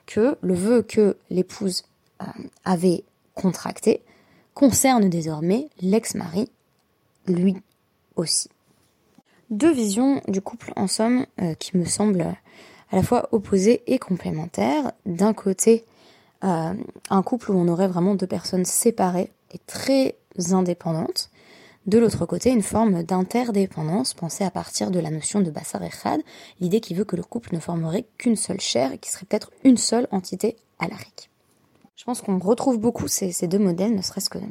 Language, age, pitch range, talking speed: French, 20-39, 185-225 Hz, 155 wpm